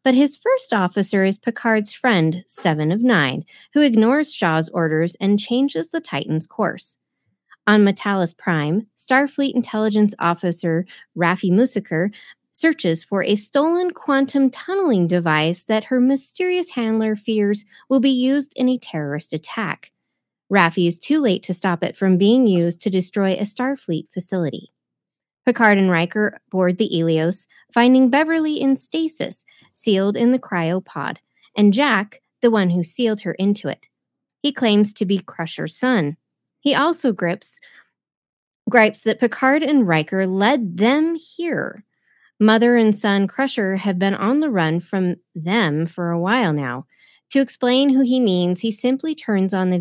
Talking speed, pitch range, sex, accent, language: 150 wpm, 180-265 Hz, female, American, English